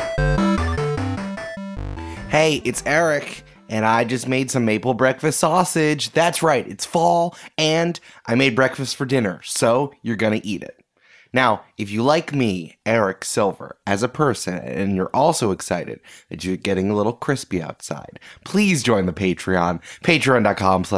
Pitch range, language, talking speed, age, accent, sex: 100-150 Hz, English, 150 wpm, 20-39, American, male